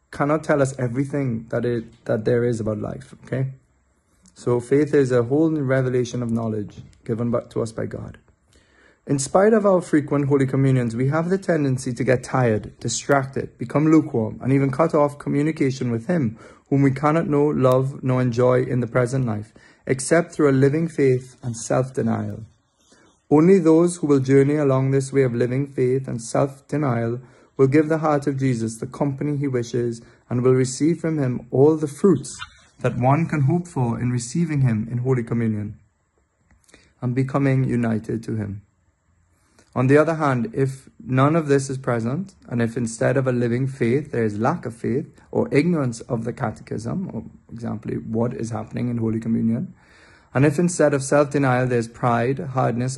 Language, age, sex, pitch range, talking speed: English, 30-49, male, 115-140 Hz, 180 wpm